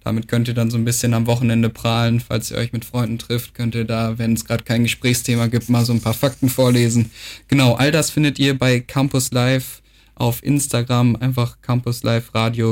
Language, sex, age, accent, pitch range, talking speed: German, male, 10-29, German, 115-135 Hz, 210 wpm